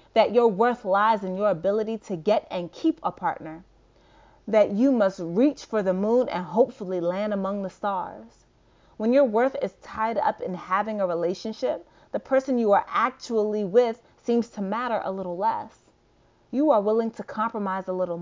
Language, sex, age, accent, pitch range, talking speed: English, female, 30-49, American, 190-240 Hz, 180 wpm